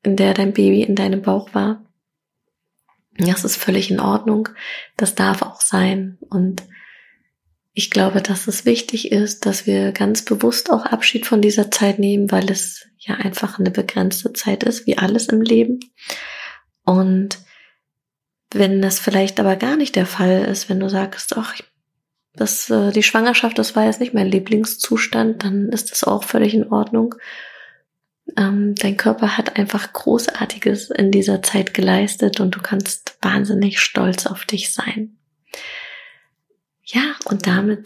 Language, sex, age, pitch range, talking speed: German, female, 20-39, 195-225 Hz, 150 wpm